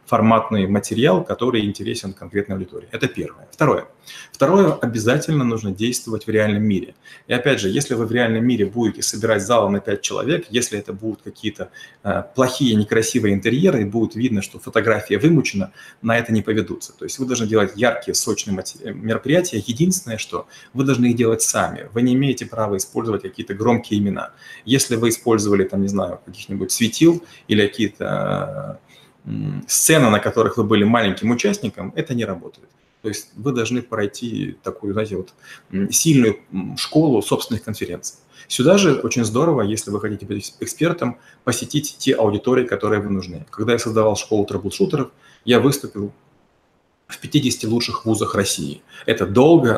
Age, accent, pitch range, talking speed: 30-49, native, 105-125 Hz, 160 wpm